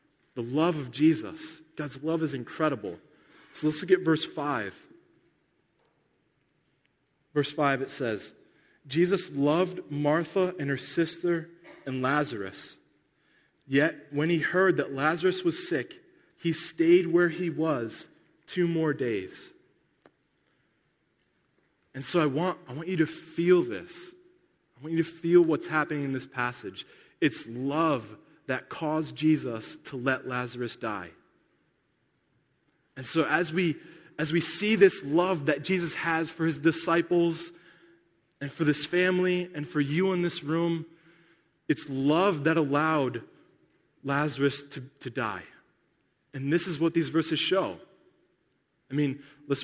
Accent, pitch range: American, 145-175 Hz